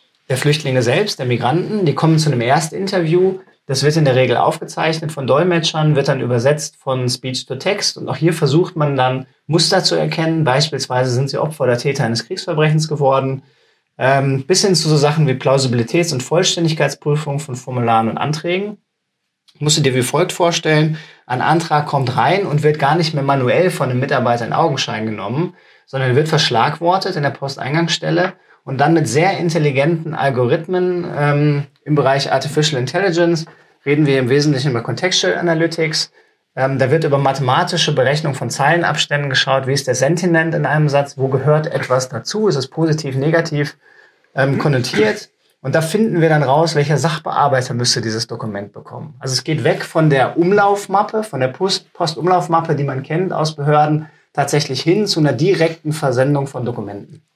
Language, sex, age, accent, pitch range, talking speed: German, male, 30-49, German, 135-165 Hz, 170 wpm